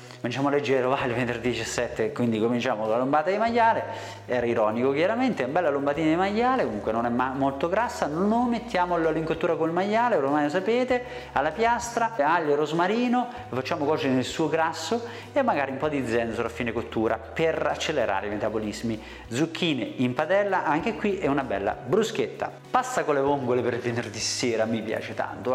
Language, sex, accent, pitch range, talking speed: Italian, male, native, 120-185 Hz, 195 wpm